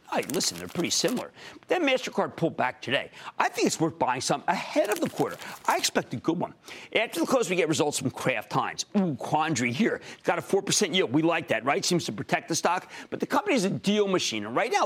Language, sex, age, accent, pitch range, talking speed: English, male, 40-59, American, 145-195 Hz, 240 wpm